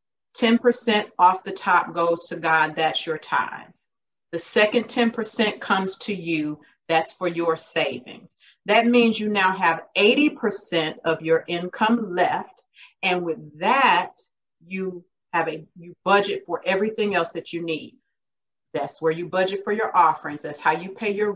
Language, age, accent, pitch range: English, 40-59, American, 170-210 Hz